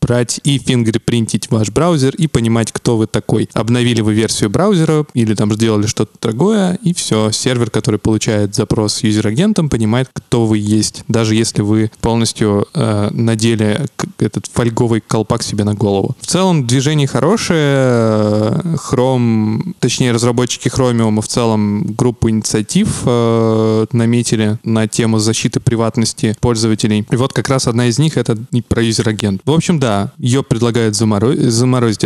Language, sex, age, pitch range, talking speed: Russian, male, 20-39, 110-125 Hz, 150 wpm